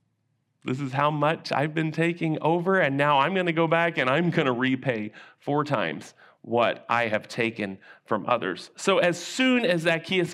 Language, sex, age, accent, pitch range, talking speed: English, male, 40-59, American, 115-155 Hz, 190 wpm